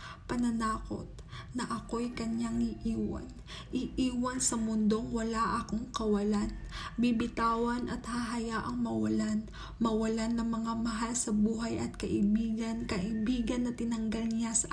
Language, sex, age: English, female, 20-39